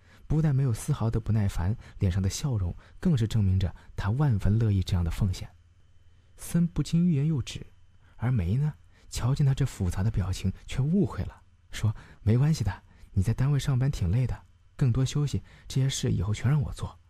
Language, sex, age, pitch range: Chinese, male, 20-39, 90-125 Hz